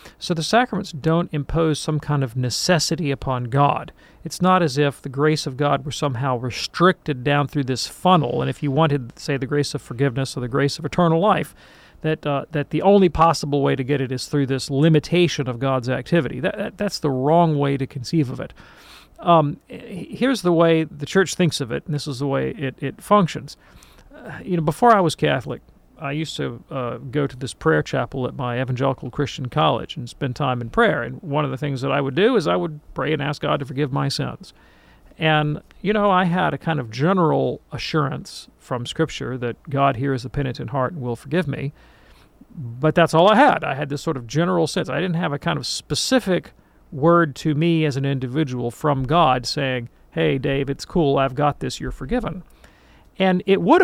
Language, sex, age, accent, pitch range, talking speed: English, male, 40-59, American, 135-170 Hz, 215 wpm